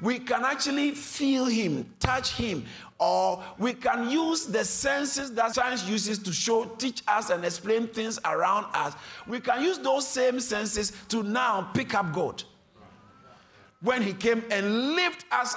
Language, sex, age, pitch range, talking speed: English, male, 50-69, 205-285 Hz, 160 wpm